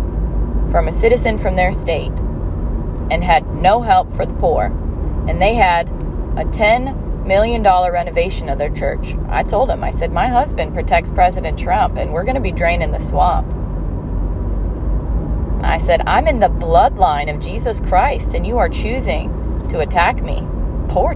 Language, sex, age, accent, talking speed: English, female, 30-49, American, 165 wpm